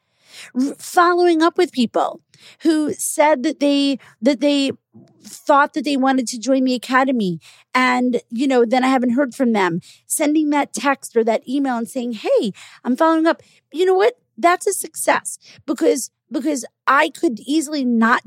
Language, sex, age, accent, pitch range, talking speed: English, female, 40-59, American, 220-285 Hz, 170 wpm